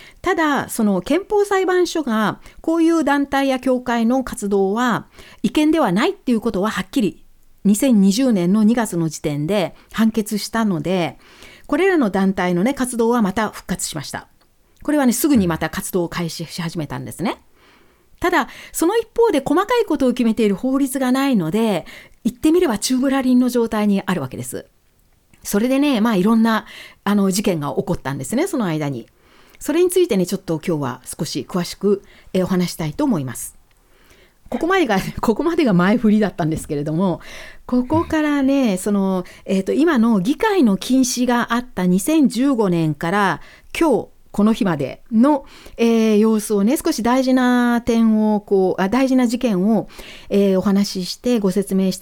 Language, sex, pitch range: Japanese, female, 190-270 Hz